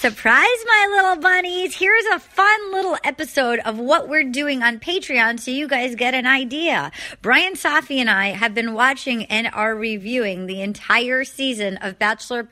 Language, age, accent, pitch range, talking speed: English, 30-49, American, 210-285 Hz, 175 wpm